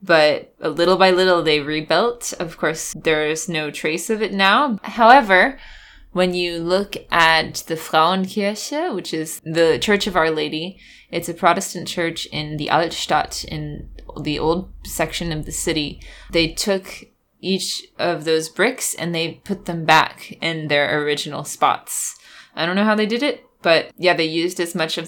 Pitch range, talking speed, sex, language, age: 160-190 Hz, 170 wpm, female, English, 20-39